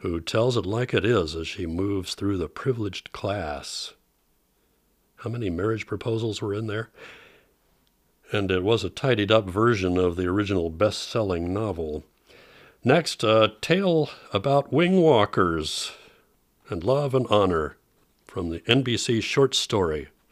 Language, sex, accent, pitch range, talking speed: English, male, American, 90-120 Hz, 135 wpm